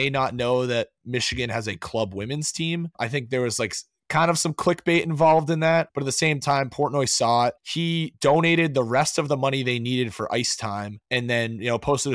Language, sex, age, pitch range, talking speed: English, male, 20-39, 110-140 Hz, 225 wpm